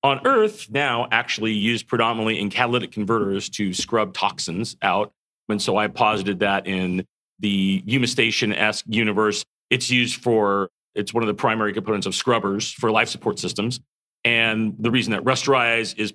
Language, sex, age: English, male, 40-59